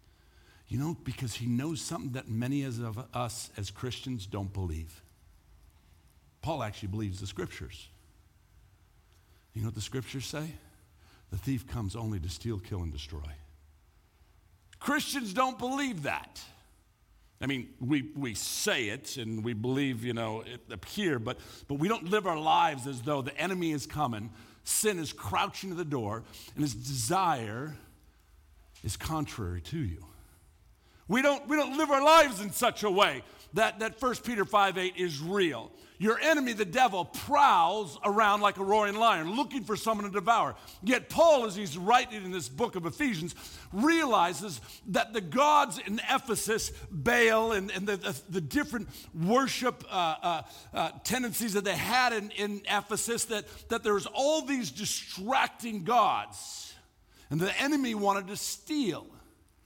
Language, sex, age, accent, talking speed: English, male, 50-69, American, 160 wpm